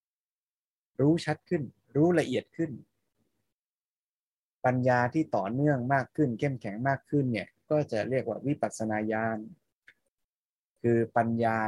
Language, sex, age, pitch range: Thai, male, 20-39, 115-145 Hz